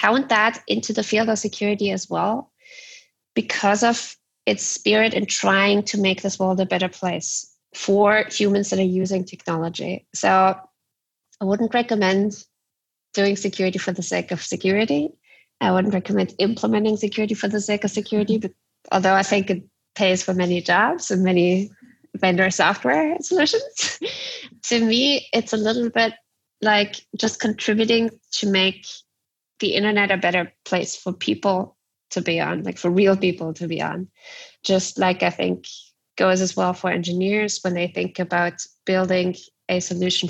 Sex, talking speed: female, 160 wpm